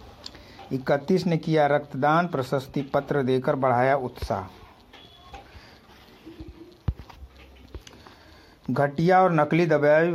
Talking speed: 75 wpm